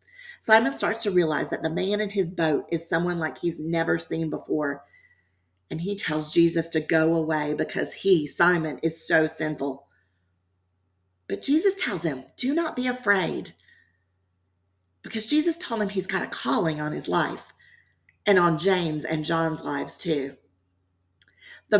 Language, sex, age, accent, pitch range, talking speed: English, female, 40-59, American, 135-190 Hz, 155 wpm